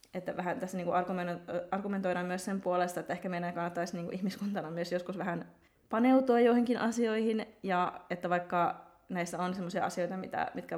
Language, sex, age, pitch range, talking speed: Finnish, female, 20-39, 175-195 Hz, 155 wpm